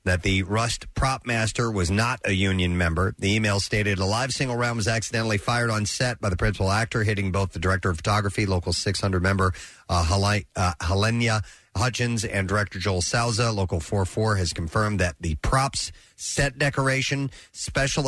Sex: male